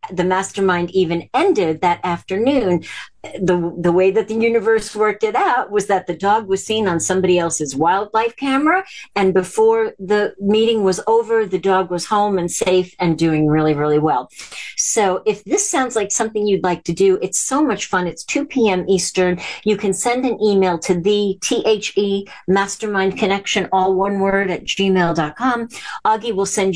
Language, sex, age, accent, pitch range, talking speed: English, female, 50-69, American, 180-220 Hz, 175 wpm